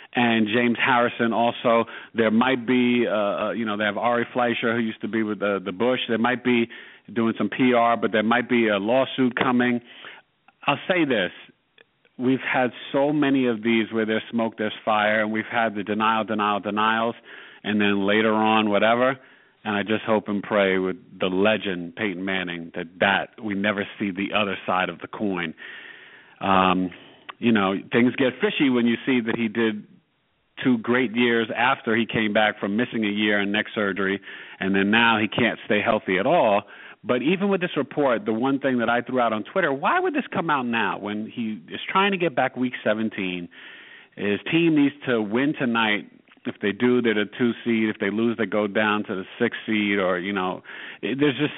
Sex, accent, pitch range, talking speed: male, American, 105-125 Hz, 205 wpm